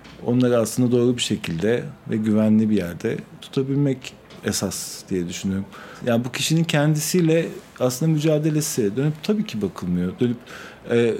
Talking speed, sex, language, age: 140 wpm, male, Turkish, 40-59